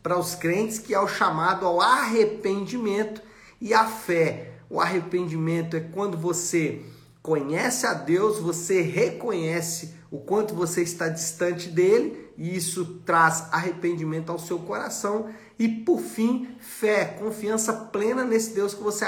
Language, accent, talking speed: Portuguese, Brazilian, 140 wpm